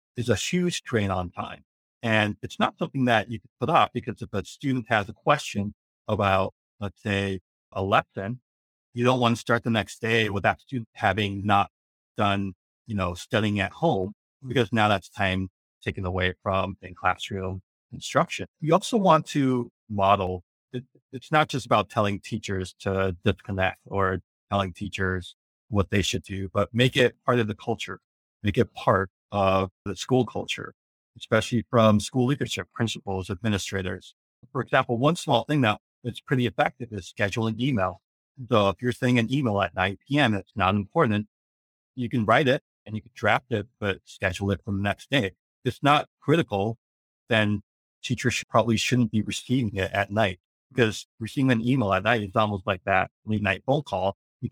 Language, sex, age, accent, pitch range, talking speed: English, male, 50-69, American, 95-120 Hz, 180 wpm